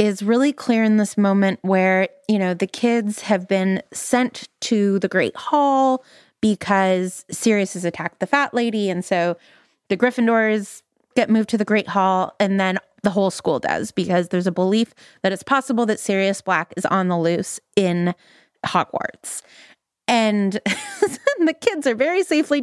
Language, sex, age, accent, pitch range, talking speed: English, female, 20-39, American, 190-245 Hz, 165 wpm